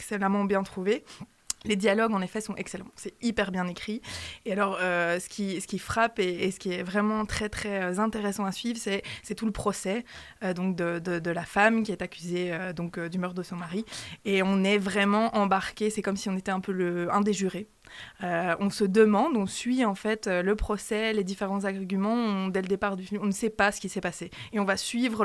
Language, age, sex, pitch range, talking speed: French, 20-39, female, 185-210 Hz, 240 wpm